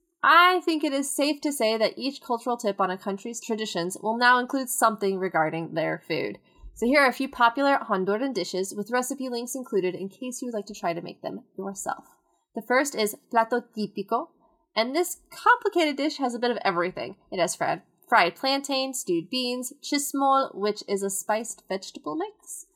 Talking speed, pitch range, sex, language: 190 wpm, 200-275 Hz, female, English